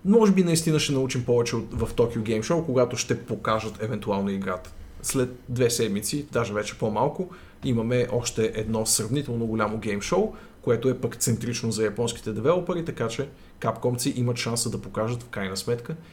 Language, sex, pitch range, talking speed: Bulgarian, male, 105-135 Hz, 165 wpm